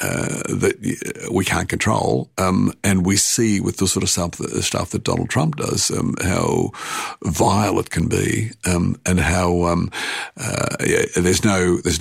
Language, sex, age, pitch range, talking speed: English, male, 60-79, 85-100 Hz, 165 wpm